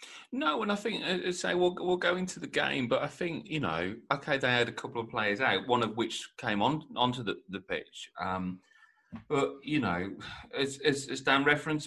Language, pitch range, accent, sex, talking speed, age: English, 120-155 Hz, British, male, 205 wpm, 30-49